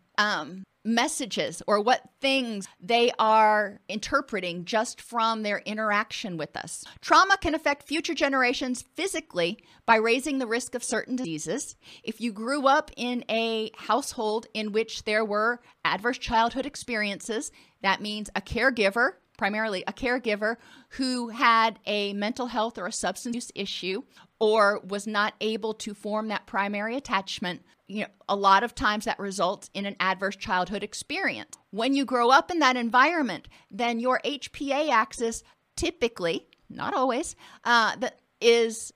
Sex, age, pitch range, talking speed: female, 40-59, 210-250 Hz, 150 wpm